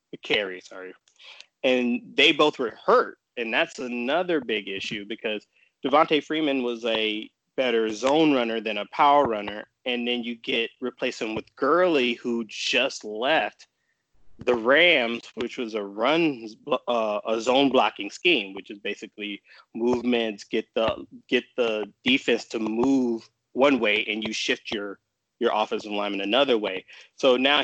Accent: American